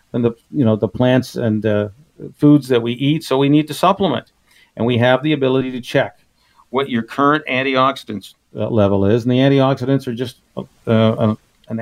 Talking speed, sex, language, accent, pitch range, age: 195 wpm, male, English, American, 115-135 Hz, 50-69